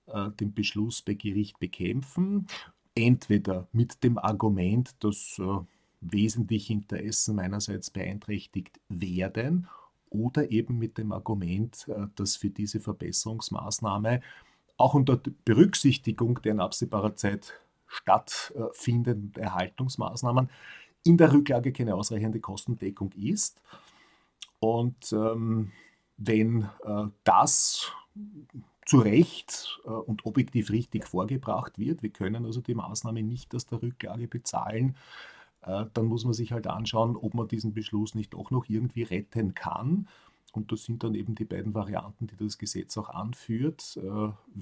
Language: German